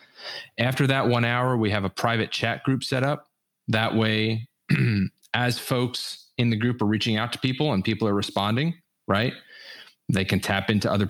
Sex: male